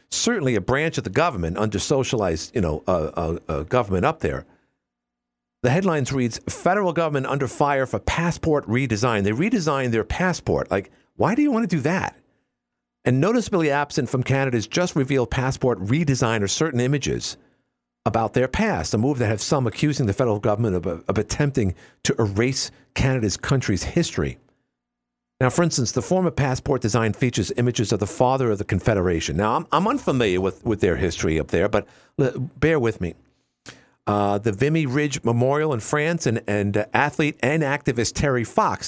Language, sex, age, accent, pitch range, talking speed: English, male, 50-69, American, 100-145 Hz, 180 wpm